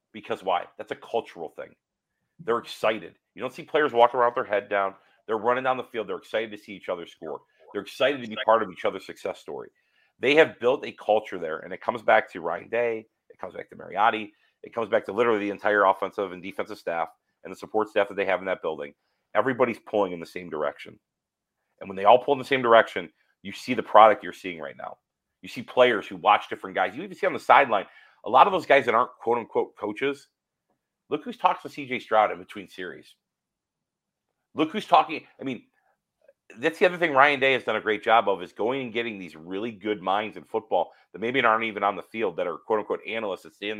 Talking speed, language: 235 wpm, English